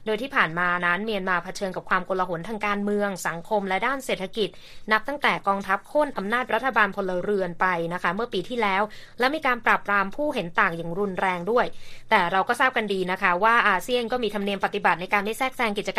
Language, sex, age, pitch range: Thai, female, 20-39, 185-240 Hz